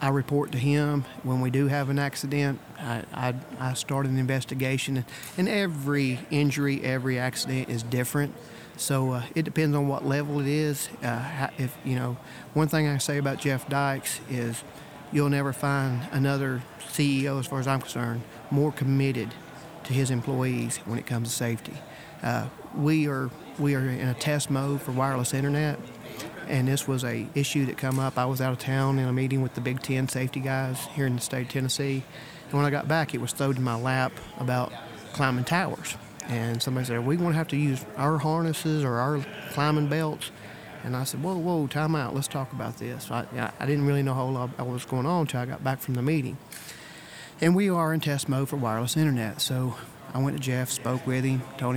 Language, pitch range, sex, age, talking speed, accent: English, 130-145 Hz, male, 40-59, 210 wpm, American